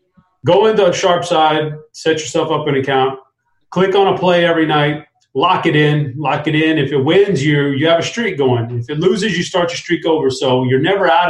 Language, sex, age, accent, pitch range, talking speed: English, male, 30-49, American, 130-170 Hz, 220 wpm